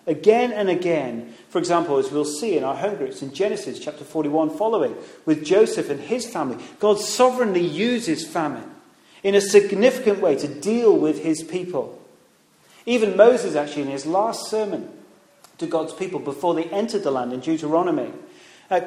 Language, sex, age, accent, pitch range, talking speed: English, male, 40-59, British, 150-220 Hz, 170 wpm